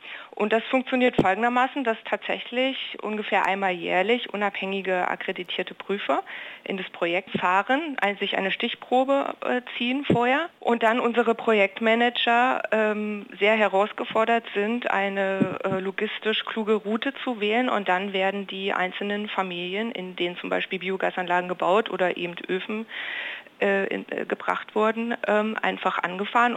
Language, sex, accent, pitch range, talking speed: German, female, German, 190-230 Hz, 130 wpm